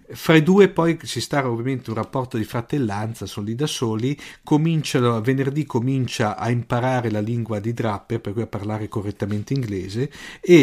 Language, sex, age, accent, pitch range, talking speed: Italian, male, 50-69, native, 110-135 Hz, 170 wpm